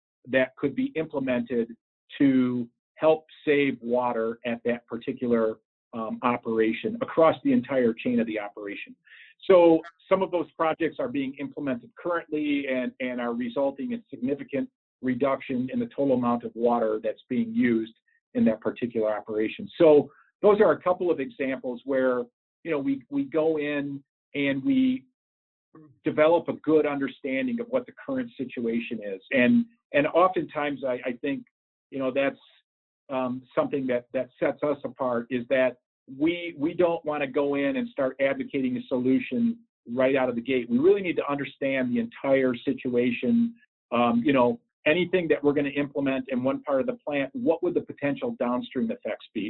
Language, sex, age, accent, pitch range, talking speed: English, male, 50-69, American, 125-175 Hz, 170 wpm